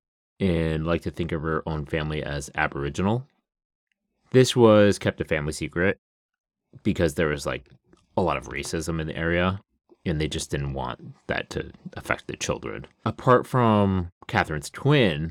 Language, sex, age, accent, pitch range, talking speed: English, male, 30-49, American, 75-100 Hz, 160 wpm